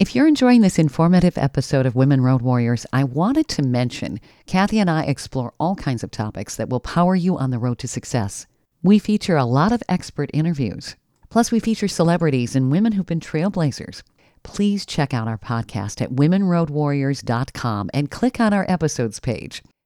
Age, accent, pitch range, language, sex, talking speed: 50-69, American, 125-180 Hz, English, female, 180 wpm